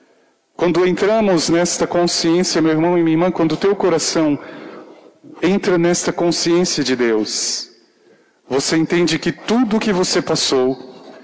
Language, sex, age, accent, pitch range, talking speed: Portuguese, male, 40-59, Brazilian, 145-180 Hz, 140 wpm